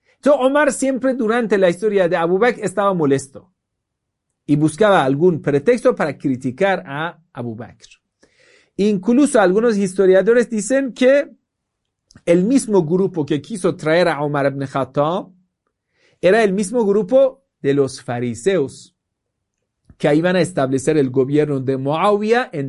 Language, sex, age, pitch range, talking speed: Spanish, male, 50-69, 140-225 Hz, 130 wpm